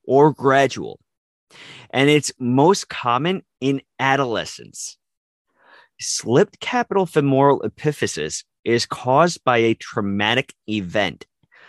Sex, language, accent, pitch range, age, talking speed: male, English, American, 110-145 Hz, 30-49, 90 wpm